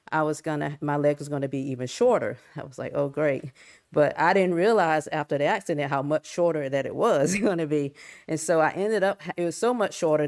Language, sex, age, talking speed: English, female, 40-59, 250 wpm